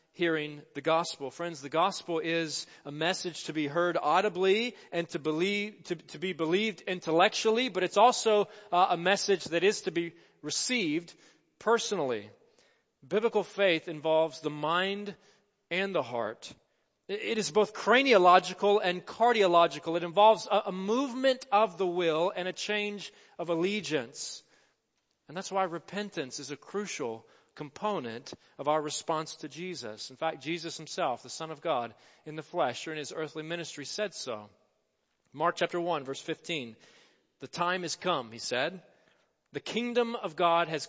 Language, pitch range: English, 160-205 Hz